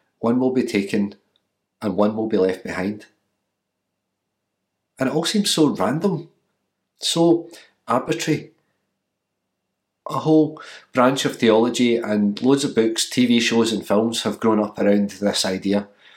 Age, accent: 40-59, British